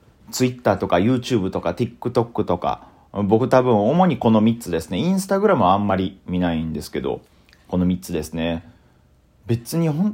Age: 40-59